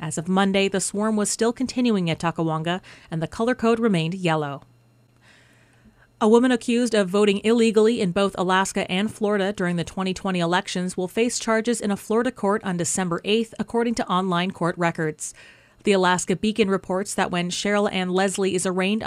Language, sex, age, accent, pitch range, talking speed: English, female, 30-49, American, 175-210 Hz, 180 wpm